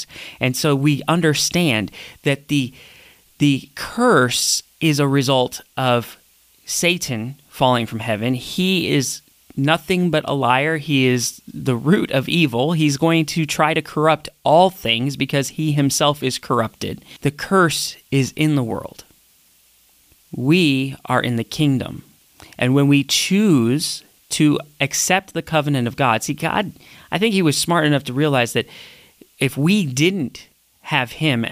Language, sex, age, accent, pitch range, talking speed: English, male, 30-49, American, 125-155 Hz, 150 wpm